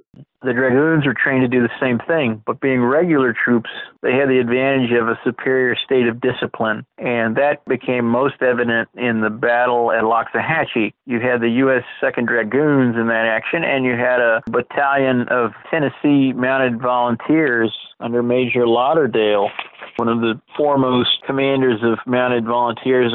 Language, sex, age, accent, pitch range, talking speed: English, male, 50-69, American, 120-130 Hz, 160 wpm